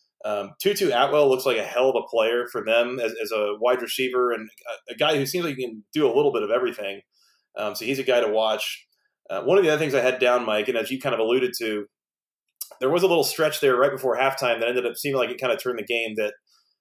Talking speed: 280 wpm